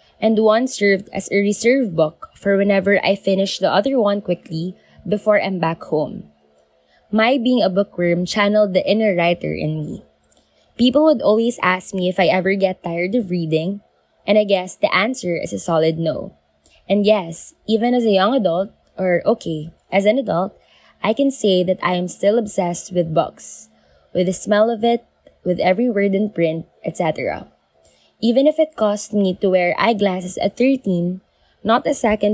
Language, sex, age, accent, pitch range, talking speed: Filipino, female, 20-39, native, 175-220 Hz, 180 wpm